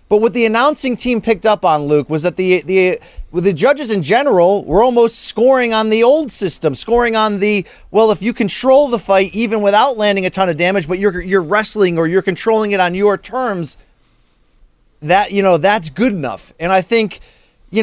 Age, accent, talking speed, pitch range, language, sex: 30-49, American, 205 wpm, 180-235 Hz, English, male